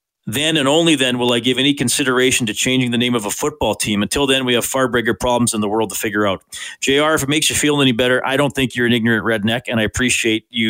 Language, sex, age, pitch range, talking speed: English, male, 40-59, 120-145 Hz, 275 wpm